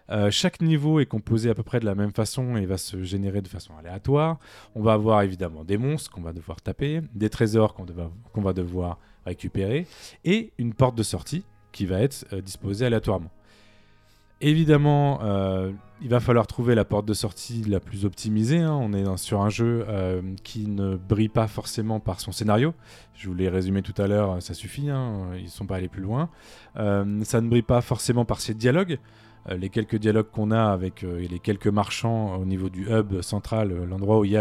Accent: French